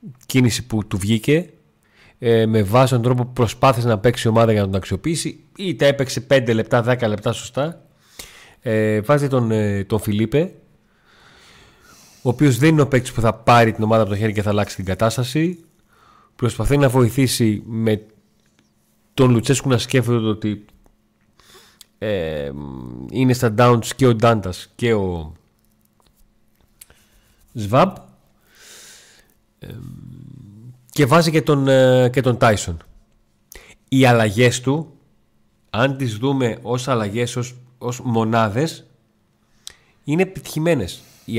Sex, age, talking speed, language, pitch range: male, 30-49, 130 wpm, Greek, 110-150 Hz